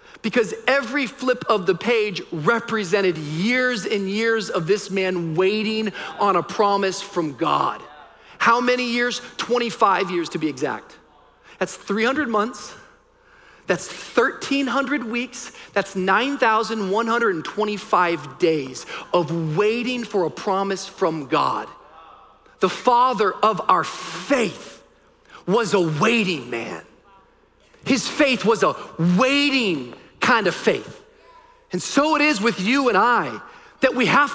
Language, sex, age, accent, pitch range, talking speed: English, male, 40-59, American, 200-275 Hz, 125 wpm